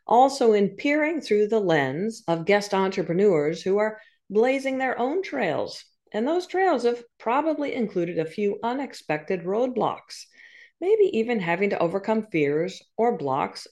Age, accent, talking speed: 50-69, American, 145 wpm